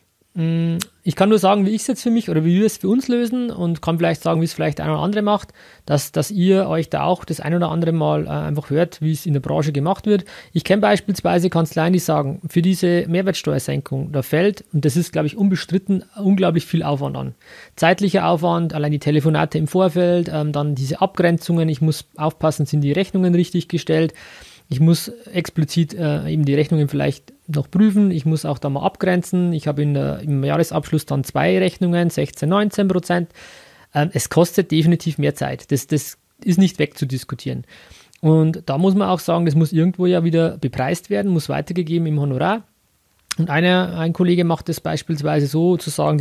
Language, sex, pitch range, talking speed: German, male, 150-185 Hz, 195 wpm